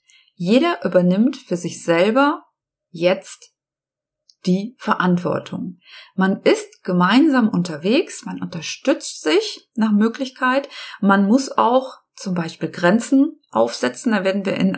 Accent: German